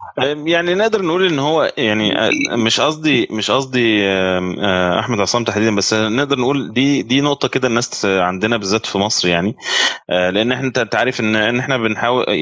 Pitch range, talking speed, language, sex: 95-125 Hz, 155 wpm, Arabic, male